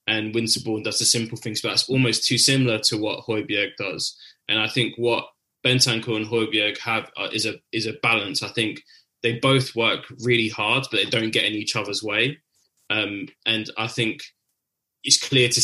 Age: 10-29